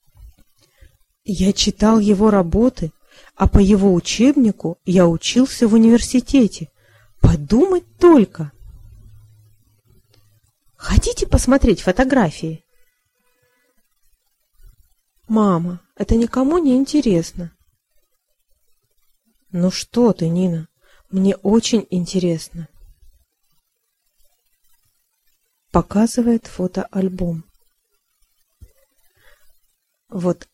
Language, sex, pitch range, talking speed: Russian, female, 170-250 Hz, 65 wpm